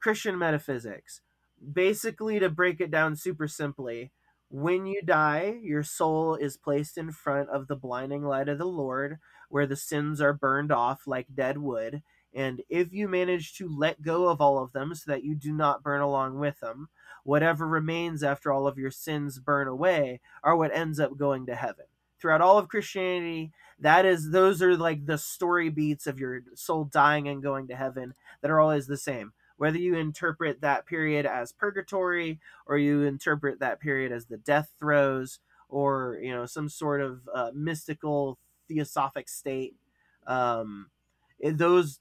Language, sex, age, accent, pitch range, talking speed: English, male, 20-39, American, 135-165 Hz, 175 wpm